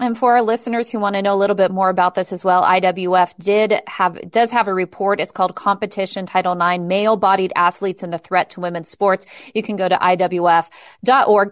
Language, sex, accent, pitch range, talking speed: English, female, American, 185-215 Hz, 220 wpm